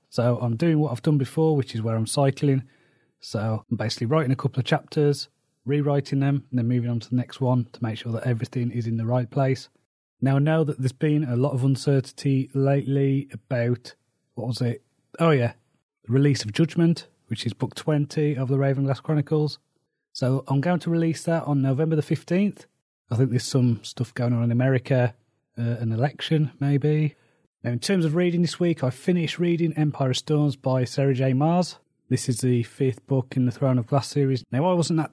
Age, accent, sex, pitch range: 30-49, British, male, 120-150 Hz